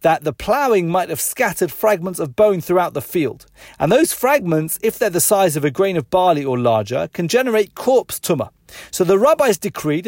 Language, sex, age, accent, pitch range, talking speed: English, male, 30-49, British, 155-210 Hz, 205 wpm